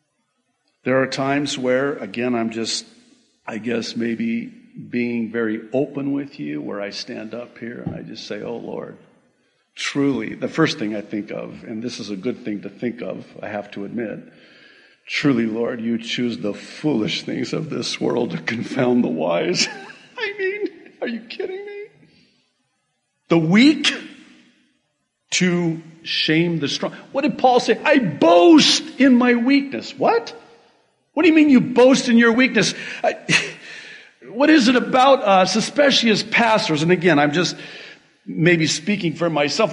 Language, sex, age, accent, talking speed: English, male, 50-69, American, 160 wpm